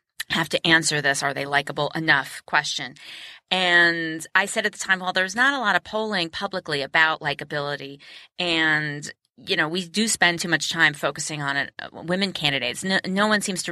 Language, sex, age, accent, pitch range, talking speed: English, female, 30-49, American, 145-185 Hz, 185 wpm